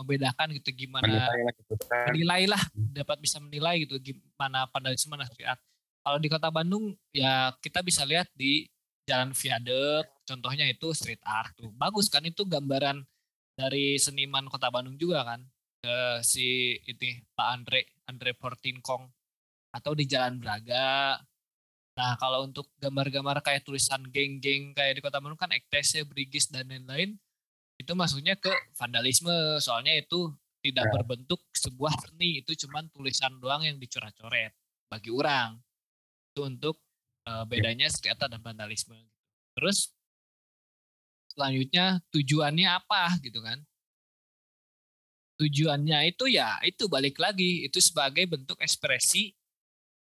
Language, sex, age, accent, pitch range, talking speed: Indonesian, male, 20-39, native, 125-155 Hz, 125 wpm